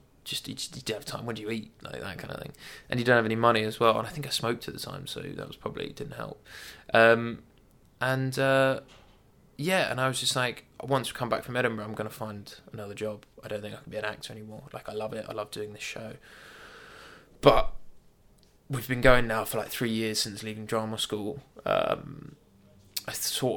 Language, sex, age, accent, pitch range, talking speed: English, male, 20-39, British, 105-120 Hz, 230 wpm